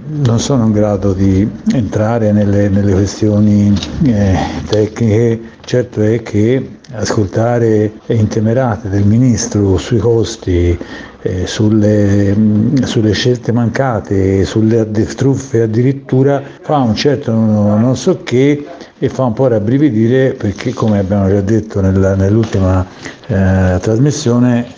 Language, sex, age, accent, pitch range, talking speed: Italian, male, 60-79, native, 100-125 Hz, 110 wpm